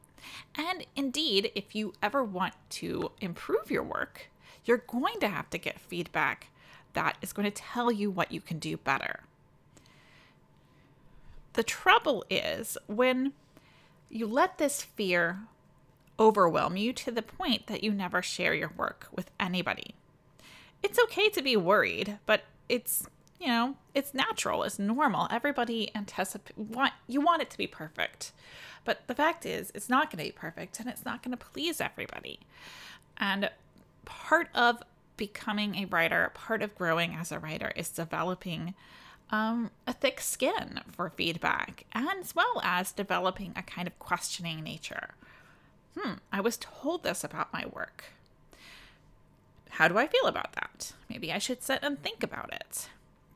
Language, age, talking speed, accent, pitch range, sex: English, 20-39, 155 wpm, American, 185-265 Hz, female